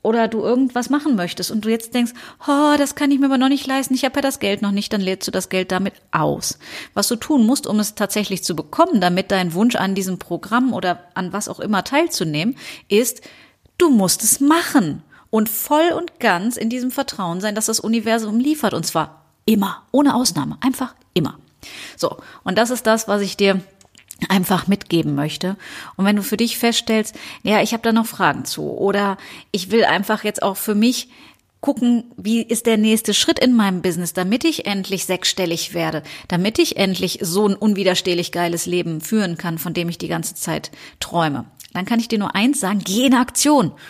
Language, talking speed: German, 205 wpm